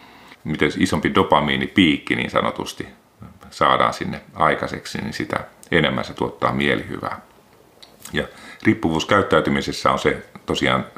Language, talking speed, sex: Finnish, 105 wpm, male